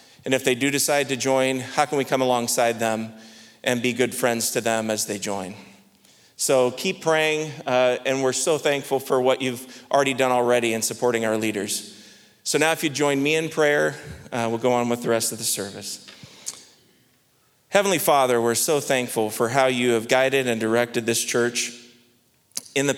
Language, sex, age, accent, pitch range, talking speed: English, male, 40-59, American, 120-135 Hz, 195 wpm